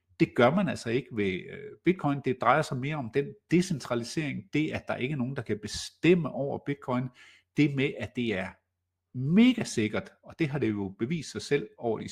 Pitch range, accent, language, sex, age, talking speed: 110-150 Hz, native, Danish, male, 60-79, 210 wpm